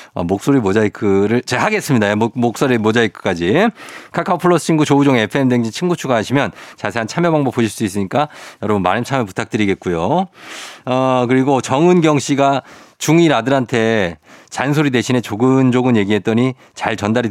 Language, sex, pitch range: Korean, male, 105-150 Hz